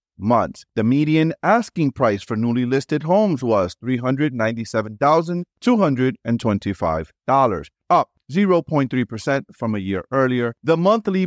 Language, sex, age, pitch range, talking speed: English, male, 30-49, 110-165 Hz, 100 wpm